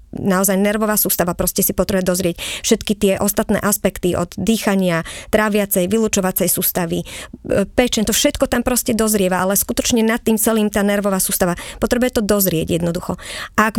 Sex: male